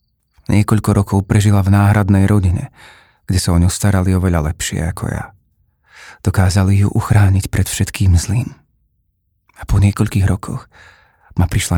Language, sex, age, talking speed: Slovak, male, 30-49, 145 wpm